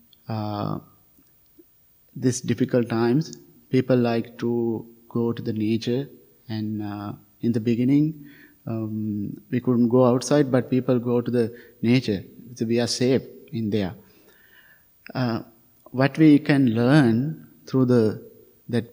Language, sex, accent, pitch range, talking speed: English, male, Indian, 115-135 Hz, 130 wpm